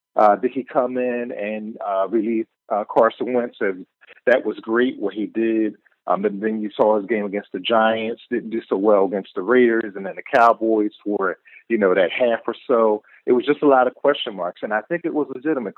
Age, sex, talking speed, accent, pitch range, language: 40-59, male, 230 wpm, American, 105-130 Hz, English